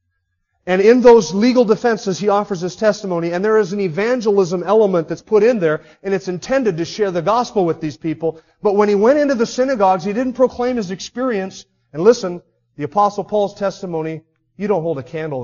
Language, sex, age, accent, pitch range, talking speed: English, male, 40-59, American, 120-195 Hz, 200 wpm